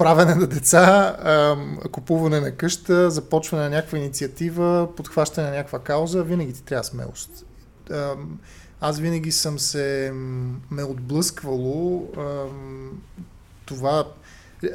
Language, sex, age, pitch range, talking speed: Bulgarian, male, 20-39, 135-170 Hz, 100 wpm